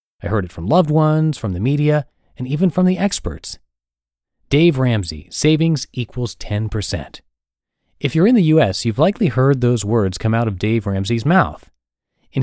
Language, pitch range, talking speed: English, 100-150 Hz, 175 wpm